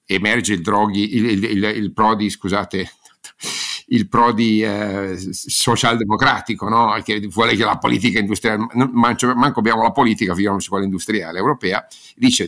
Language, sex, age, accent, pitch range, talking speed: Italian, male, 50-69, native, 95-115 Hz, 140 wpm